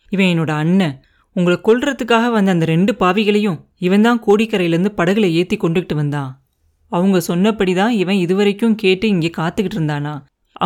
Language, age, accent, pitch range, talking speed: Tamil, 30-49, native, 165-210 Hz, 140 wpm